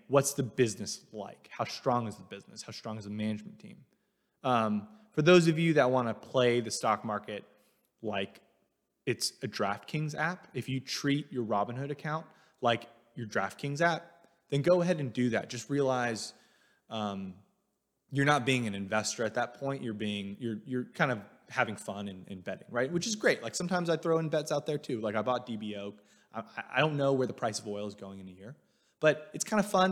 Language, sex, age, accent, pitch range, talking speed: English, male, 20-39, American, 110-150 Hz, 210 wpm